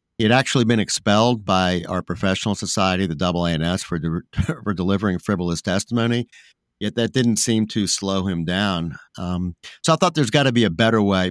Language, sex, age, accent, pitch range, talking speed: English, male, 50-69, American, 90-110 Hz, 190 wpm